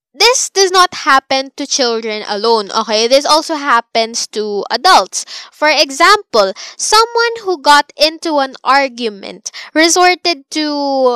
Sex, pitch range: female, 260-360 Hz